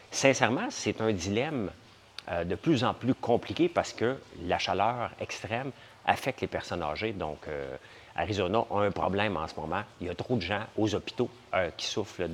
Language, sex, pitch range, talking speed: English, male, 95-120 Hz, 190 wpm